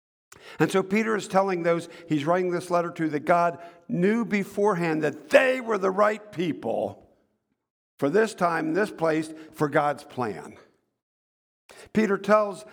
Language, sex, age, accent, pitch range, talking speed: English, male, 50-69, American, 150-190 Hz, 145 wpm